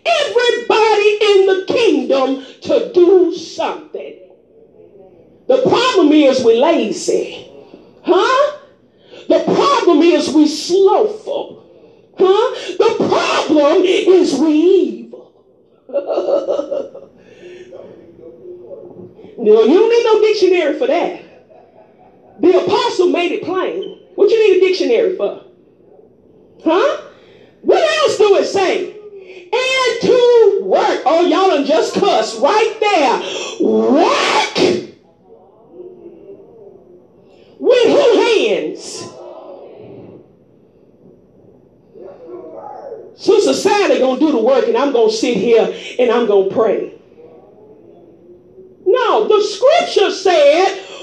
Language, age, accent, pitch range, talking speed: English, 40-59, American, 355-445 Hz, 95 wpm